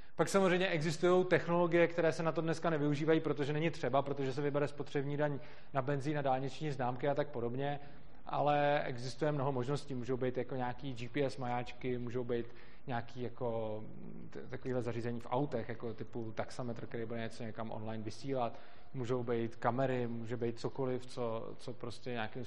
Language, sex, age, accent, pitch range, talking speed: Czech, male, 20-39, native, 120-145 Hz, 170 wpm